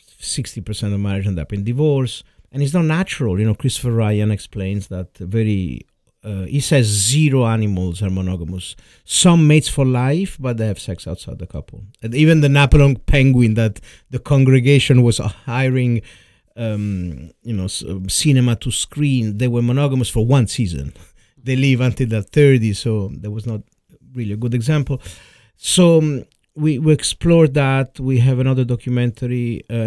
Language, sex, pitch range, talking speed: English, male, 100-135 Hz, 160 wpm